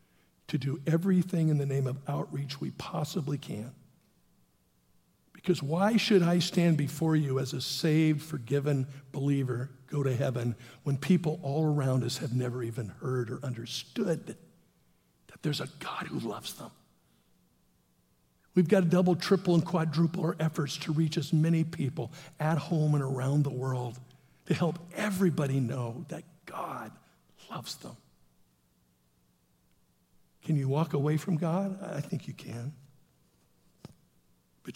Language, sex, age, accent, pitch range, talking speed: English, male, 50-69, American, 120-160 Hz, 145 wpm